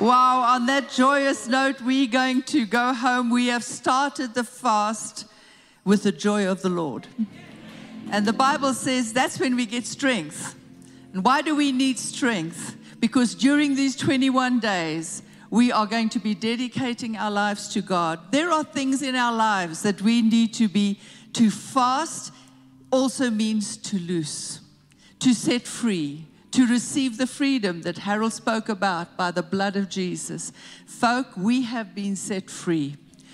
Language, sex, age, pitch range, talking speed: English, female, 60-79, 205-255 Hz, 160 wpm